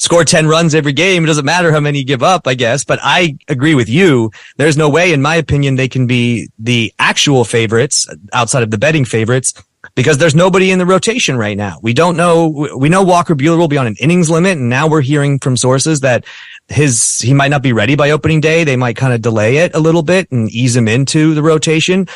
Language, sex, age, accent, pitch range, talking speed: English, male, 30-49, American, 120-160 Hz, 240 wpm